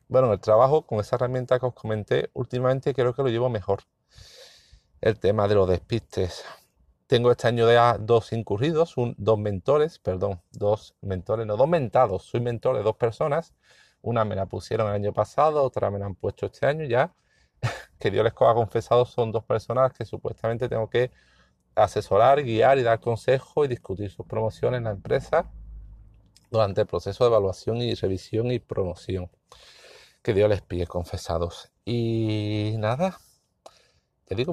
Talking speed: 170 wpm